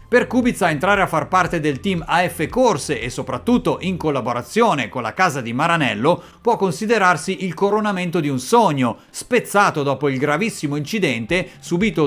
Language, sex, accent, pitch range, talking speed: Italian, male, native, 145-200 Hz, 160 wpm